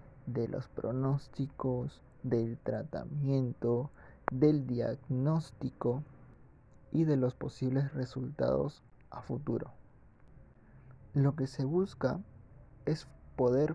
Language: Spanish